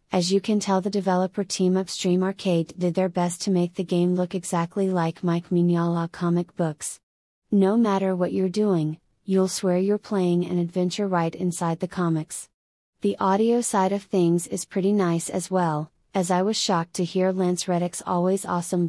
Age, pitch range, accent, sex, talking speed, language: 30-49, 170-195 Hz, American, female, 185 wpm, English